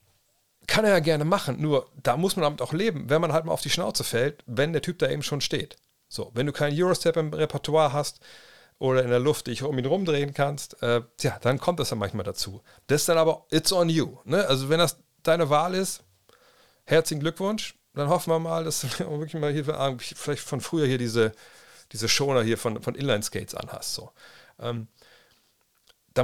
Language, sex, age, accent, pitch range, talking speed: German, male, 40-59, German, 130-175 Hz, 215 wpm